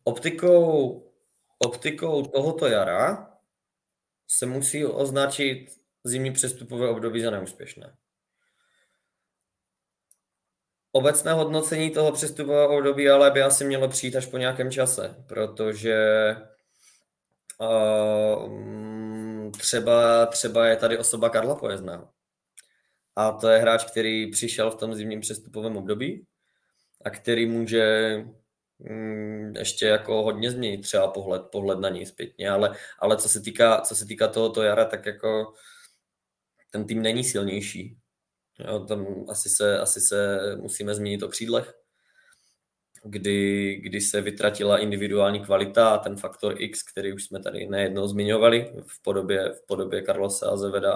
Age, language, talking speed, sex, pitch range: 20-39, Czech, 125 wpm, male, 105-125 Hz